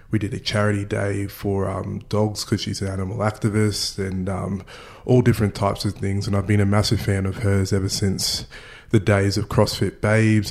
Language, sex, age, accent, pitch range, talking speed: English, male, 20-39, Australian, 100-110 Hz, 200 wpm